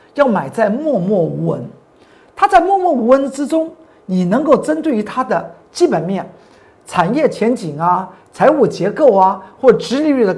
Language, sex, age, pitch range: Chinese, male, 50-69, 205-310 Hz